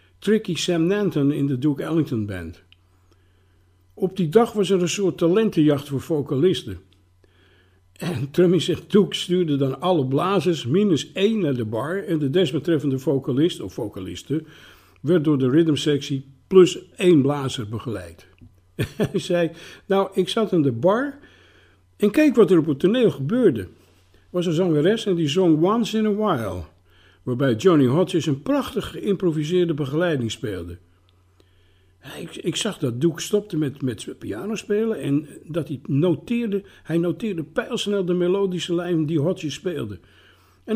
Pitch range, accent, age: 115-190 Hz, Dutch, 60-79